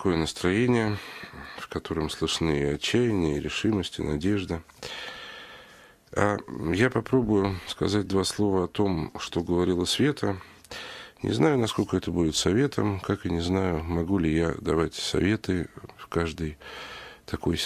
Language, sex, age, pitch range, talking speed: Russian, male, 40-59, 85-120 Hz, 135 wpm